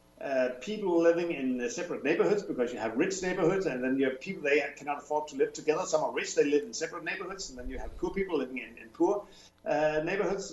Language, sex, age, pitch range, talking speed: English, male, 50-69, 145-185 Hz, 240 wpm